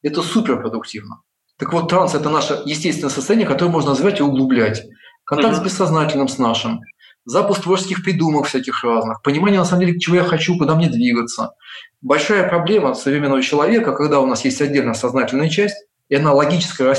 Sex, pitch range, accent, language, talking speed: male, 135-185 Hz, native, Russian, 170 wpm